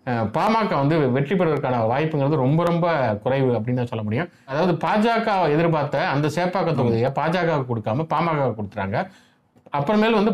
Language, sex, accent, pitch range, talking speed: Tamil, male, native, 125-185 Hz, 140 wpm